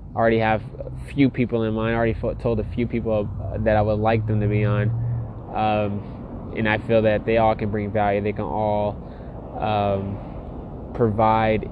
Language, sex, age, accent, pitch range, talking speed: English, male, 20-39, American, 105-115 Hz, 185 wpm